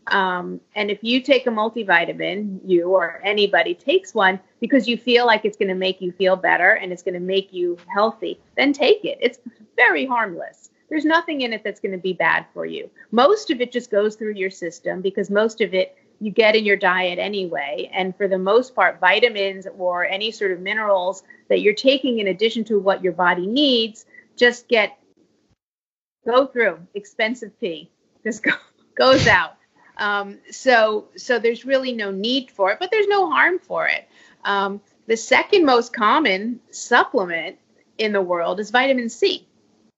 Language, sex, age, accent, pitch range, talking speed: English, female, 30-49, American, 190-245 Hz, 185 wpm